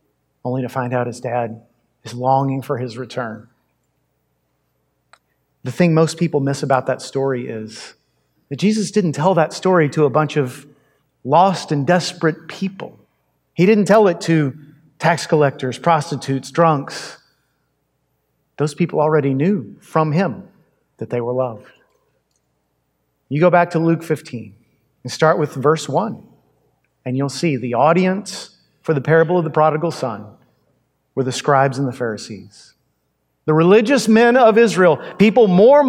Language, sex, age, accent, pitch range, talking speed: English, male, 40-59, American, 130-180 Hz, 150 wpm